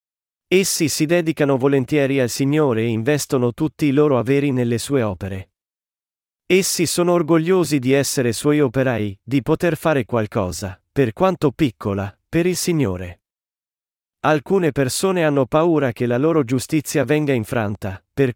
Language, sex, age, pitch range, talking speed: Italian, male, 40-59, 120-160 Hz, 140 wpm